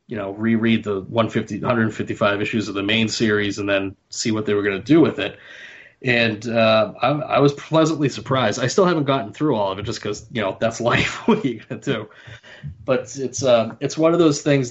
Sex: male